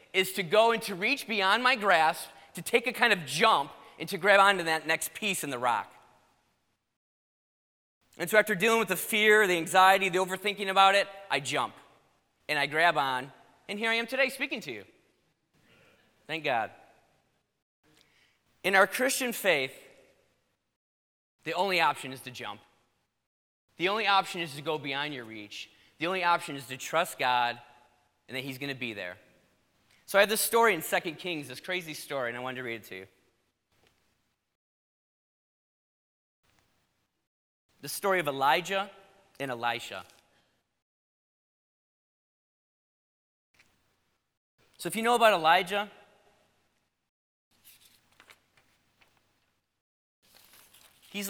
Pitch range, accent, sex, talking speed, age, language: 120-205 Hz, American, male, 140 wpm, 20-39, English